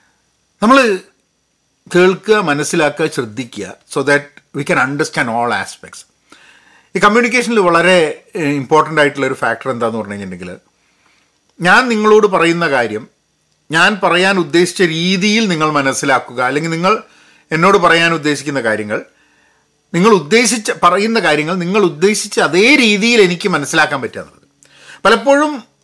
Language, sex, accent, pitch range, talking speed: Malayalam, male, native, 140-195 Hz, 115 wpm